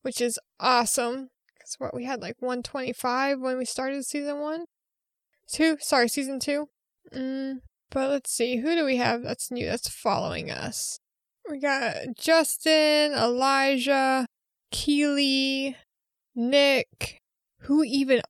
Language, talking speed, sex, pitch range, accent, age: English, 130 wpm, female, 245-275 Hz, American, 20-39